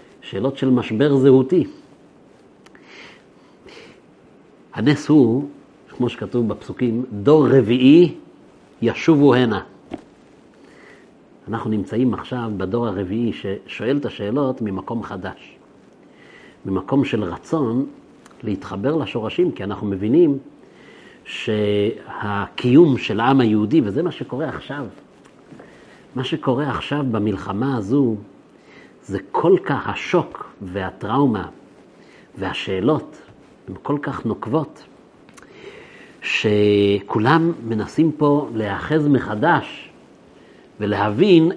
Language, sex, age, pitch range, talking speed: Hebrew, male, 50-69, 110-145 Hz, 85 wpm